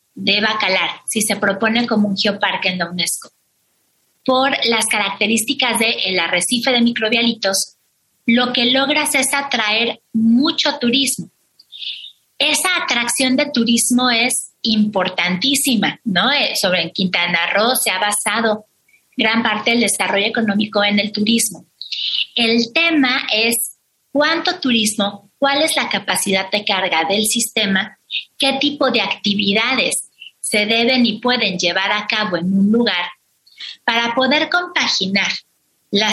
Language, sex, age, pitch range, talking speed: Spanish, female, 30-49, 200-250 Hz, 130 wpm